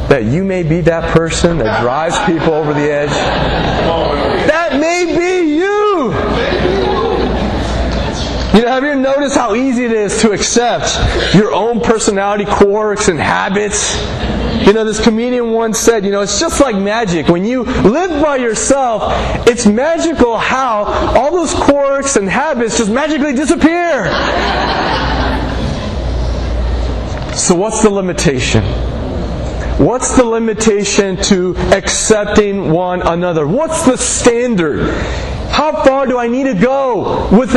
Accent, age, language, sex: American, 30-49, English, male